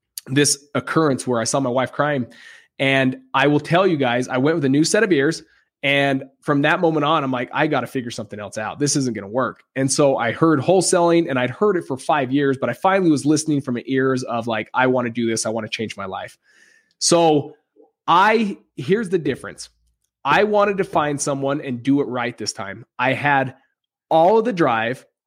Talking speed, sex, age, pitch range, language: 230 wpm, male, 20-39, 130-175 Hz, English